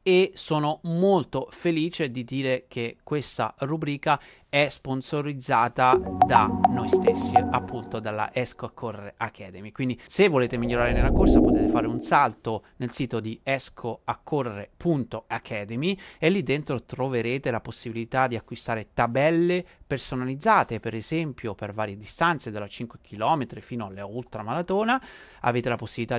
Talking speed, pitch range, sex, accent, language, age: 135 wpm, 110-145 Hz, male, native, Italian, 30-49